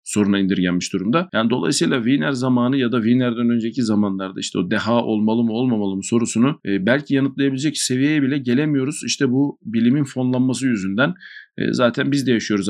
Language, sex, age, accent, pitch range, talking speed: Turkish, male, 50-69, native, 110-135 Hz, 160 wpm